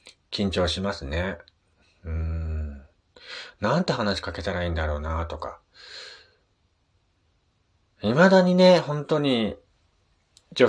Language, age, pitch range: Japanese, 40-59, 85-140 Hz